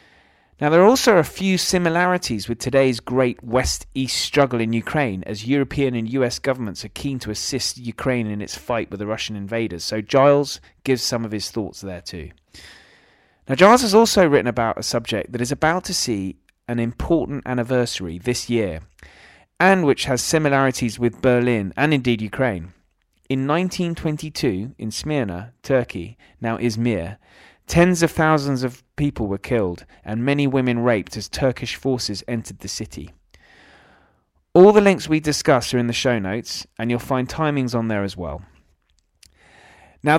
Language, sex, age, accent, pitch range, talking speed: English, male, 30-49, British, 110-150 Hz, 165 wpm